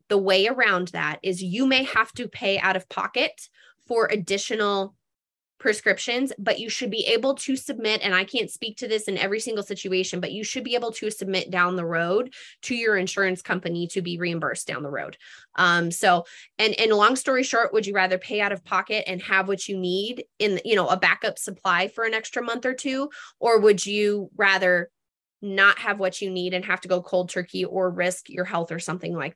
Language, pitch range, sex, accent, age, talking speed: English, 180-215 Hz, female, American, 20-39, 215 wpm